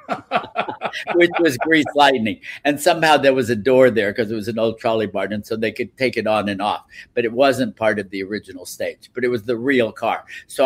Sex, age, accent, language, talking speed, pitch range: male, 60-79, American, English, 235 wpm, 105-125 Hz